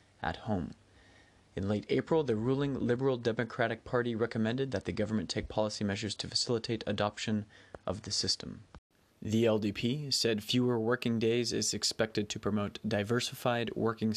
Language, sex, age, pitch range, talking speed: English, male, 20-39, 105-120 Hz, 150 wpm